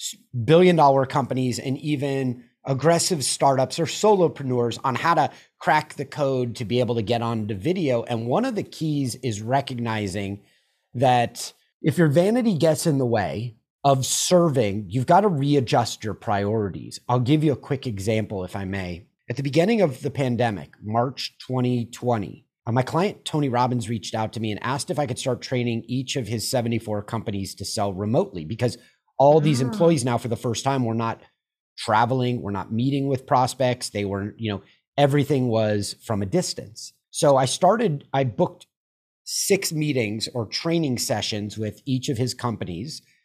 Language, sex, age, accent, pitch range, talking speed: English, male, 30-49, American, 115-140 Hz, 175 wpm